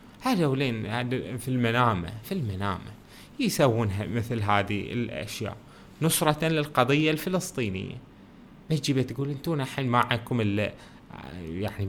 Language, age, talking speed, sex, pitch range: Arabic, 20-39, 90 wpm, male, 105-140 Hz